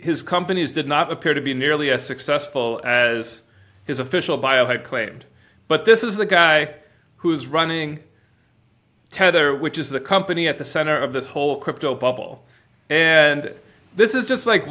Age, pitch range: 30-49, 120-180 Hz